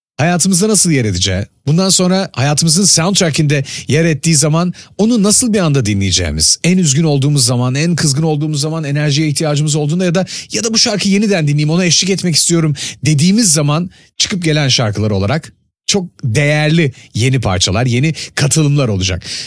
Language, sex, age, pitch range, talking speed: Turkish, male, 40-59, 135-175 Hz, 160 wpm